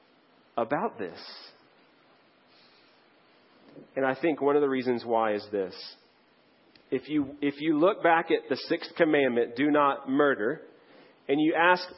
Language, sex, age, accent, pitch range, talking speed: English, male, 40-59, American, 140-180 Hz, 140 wpm